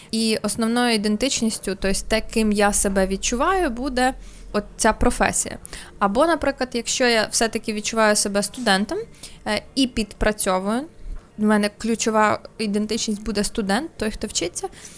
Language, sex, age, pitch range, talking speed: Ukrainian, female, 20-39, 205-245 Hz, 125 wpm